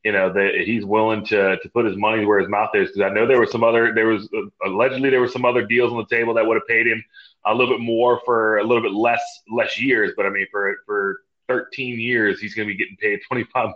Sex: male